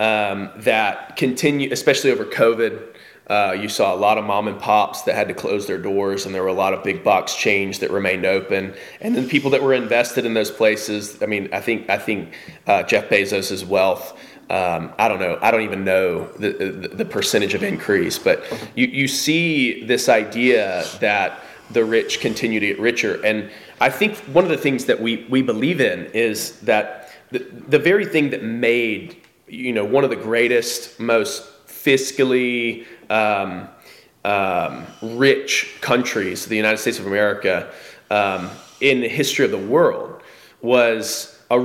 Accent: American